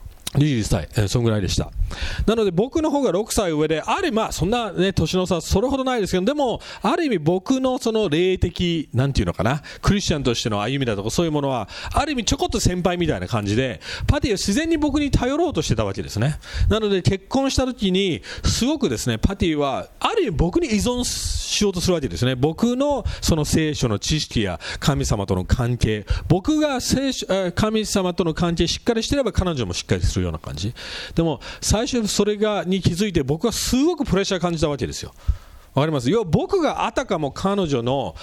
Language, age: English, 40-59